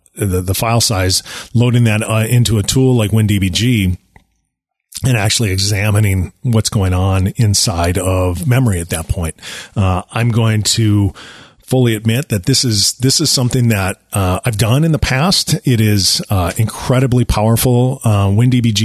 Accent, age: American, 40-59